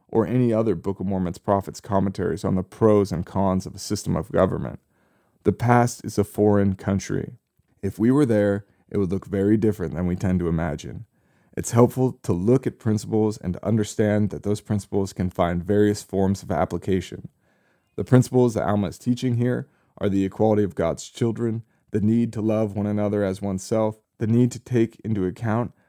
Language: English